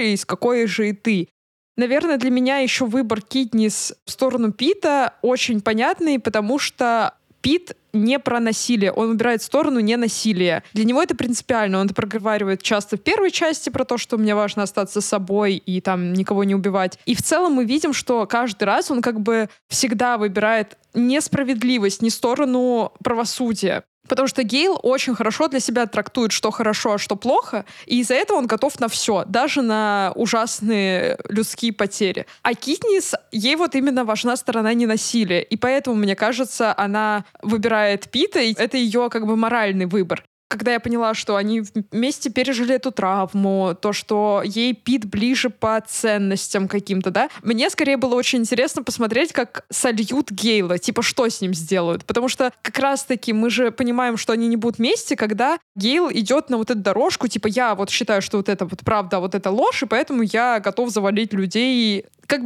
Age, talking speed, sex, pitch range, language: 20-39, 175 wpm, female, 210-255 Hz, Russian